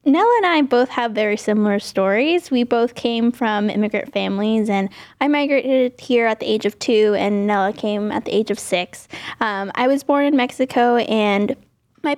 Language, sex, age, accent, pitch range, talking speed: English, female, 10-29, American, 215-265 Hz, 190 wpm